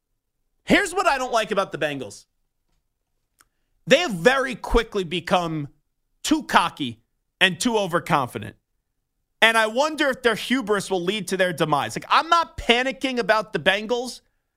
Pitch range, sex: 175-235 Hz, male